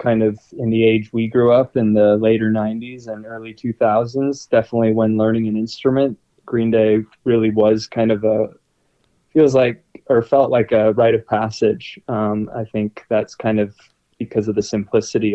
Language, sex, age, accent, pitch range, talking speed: English, male, 20-39, American, 110-120 Hz, 180 wpm